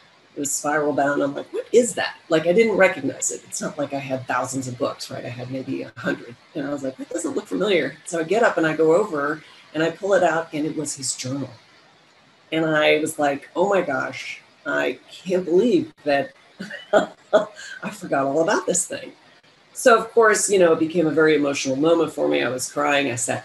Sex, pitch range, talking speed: female, 140-170 Hz, 230 wpm